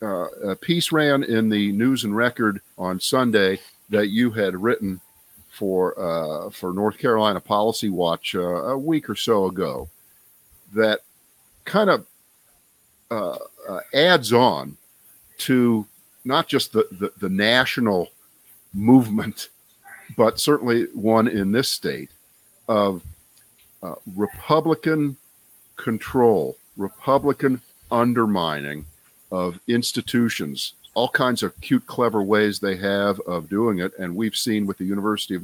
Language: English